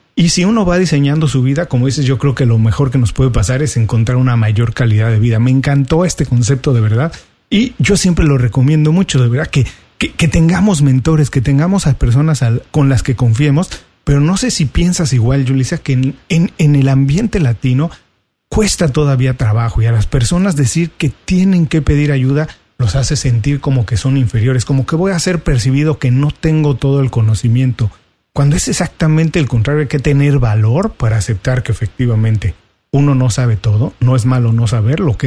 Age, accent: 40-59, Mexican